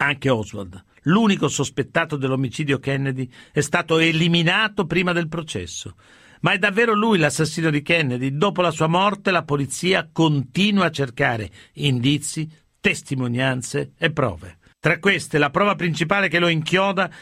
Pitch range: 135-175 Hz